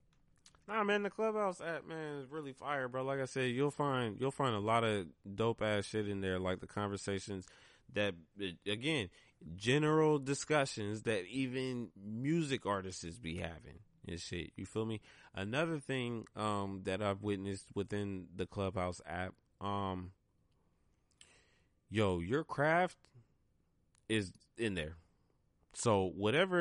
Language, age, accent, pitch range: English, 20-39, American, 100-145 Hz